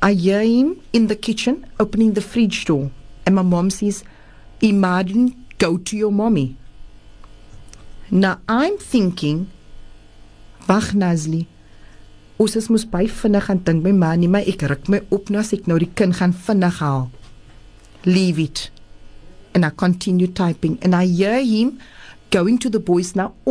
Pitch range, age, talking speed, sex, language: 145-210 Hz, 40-59, 105 wpm, female, English